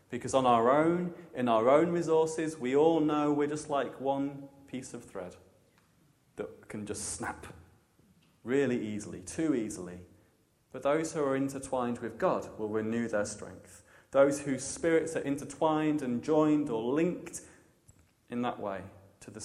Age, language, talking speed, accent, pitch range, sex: 30-49, English, 155 wpm, British, 110-155 Hz, male